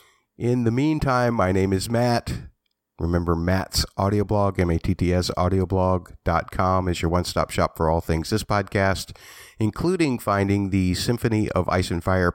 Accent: American